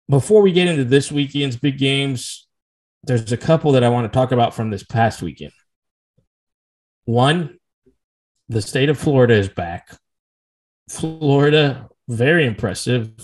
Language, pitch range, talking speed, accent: English, 115-150 Hz, 140 wpm, American